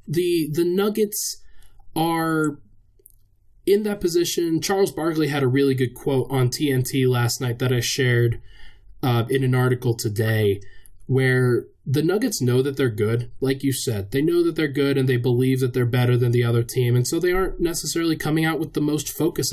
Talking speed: 190 wpm